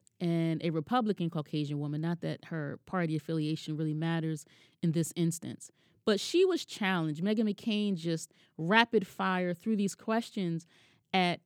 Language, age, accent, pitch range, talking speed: English, 30-49, American, 170-225 Hz, 145 wpm